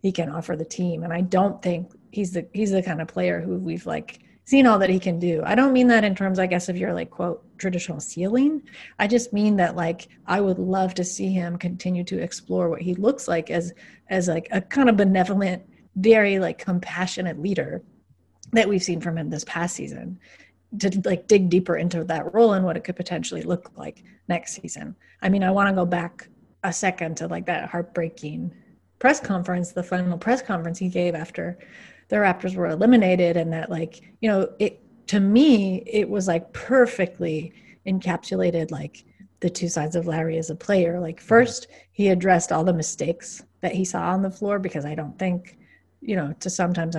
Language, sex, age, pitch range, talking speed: English, female, 30-49, 170-200 Hz, 205 wpm